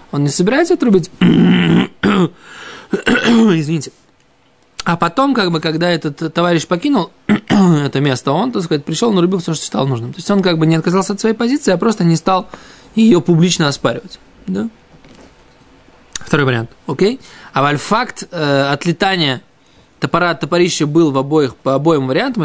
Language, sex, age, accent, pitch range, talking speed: Russian, male, 20-39, native, 145-195 Hz, 150 wpm